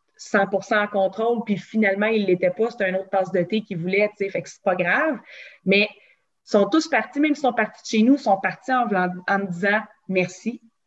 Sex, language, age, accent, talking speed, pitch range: female, English, 20-39, Canadian, 245 wpm, 185-220 Hz